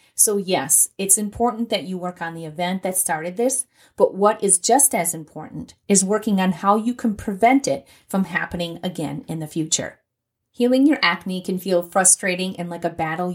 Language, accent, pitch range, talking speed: English, American, 170-205 Hz, 195 wpm